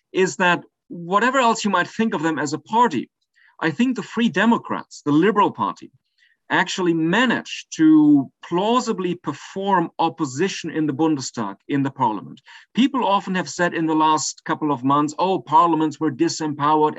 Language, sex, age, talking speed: English, male, 40-59, 165 wpm